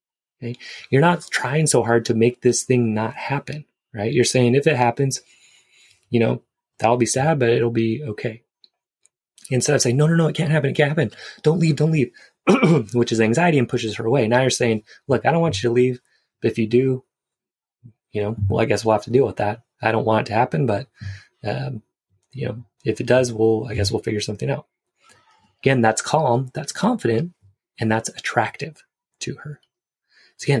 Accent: American